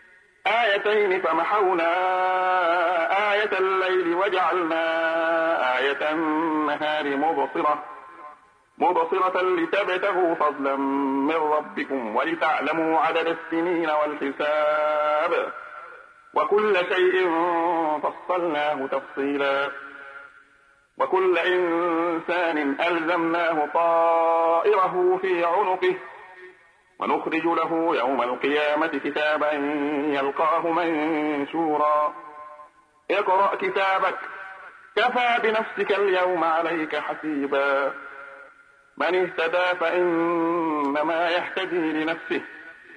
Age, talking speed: 50-69, 65 wpm